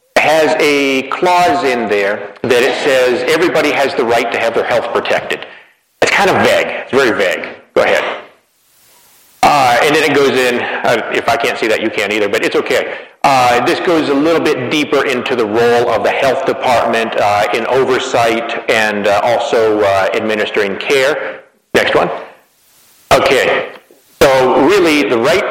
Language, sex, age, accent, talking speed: English, male, 40-59, American, 175 wpm